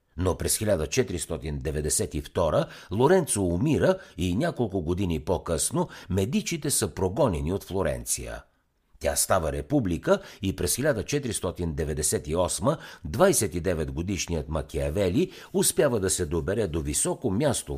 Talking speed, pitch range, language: 100 wpm, 80-125 Hz, Bulgarian